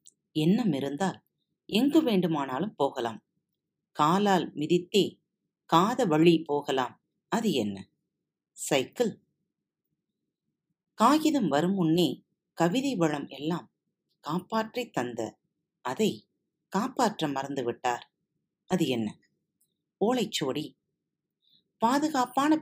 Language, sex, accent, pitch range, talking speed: Tamil, female, native, 155-215 Hz, 70 wpm